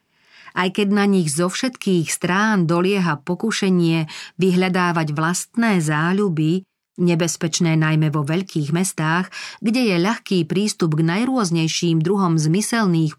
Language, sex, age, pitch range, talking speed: Slovak, female, 40-59, 160-200 Hz, 115 wpm